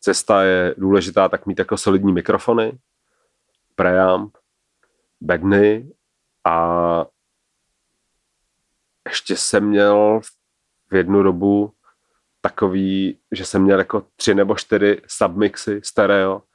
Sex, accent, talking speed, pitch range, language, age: male, native, 100 wpm, 95-105 Hz, Czech, 40-59